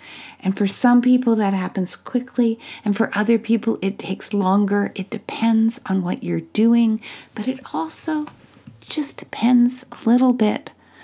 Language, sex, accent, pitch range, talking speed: English, female, American, 190-240 Hz, 150 wpm